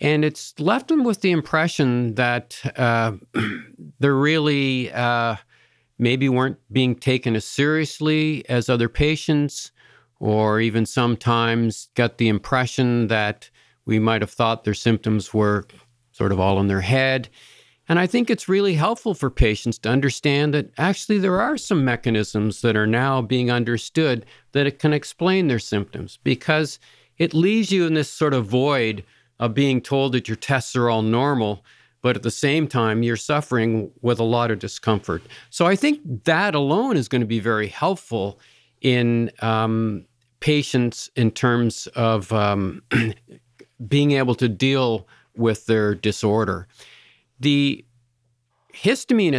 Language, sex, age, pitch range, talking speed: English, male, 50-69, 110-145 Hz, 150 wpm